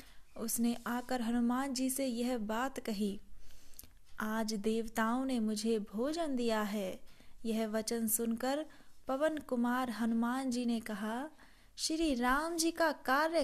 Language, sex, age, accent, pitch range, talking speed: Hindi, female, 20-39, native, 220-265 Hz, 130 wpm